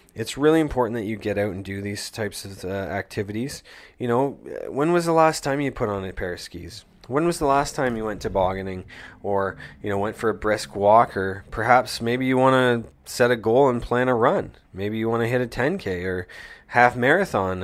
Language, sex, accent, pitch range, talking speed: English, male, American, 100-125 Hz, 230 wpm